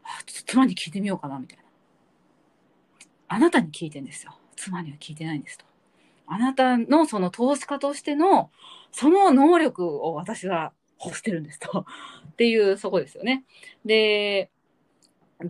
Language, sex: Japanese, female